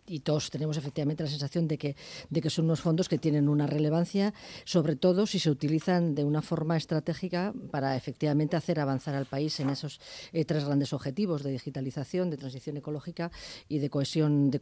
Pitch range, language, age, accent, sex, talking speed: 145-170 Hz, Spanish, 40-59, Spanish, female, 195 wpm